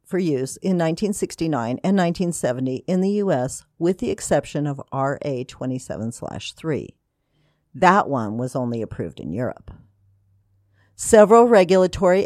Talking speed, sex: 115 wpm, female